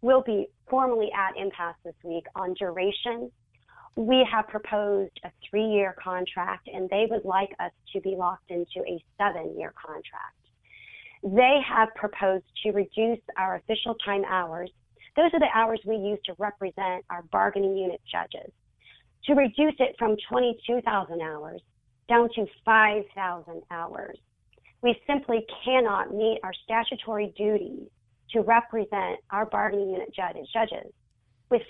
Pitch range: 190-235 Hz